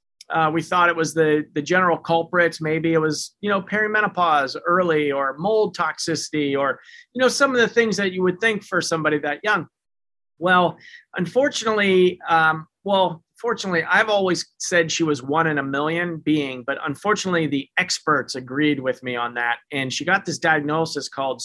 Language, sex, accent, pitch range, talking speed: English, male, American, 145-180 Hz, 180 wpm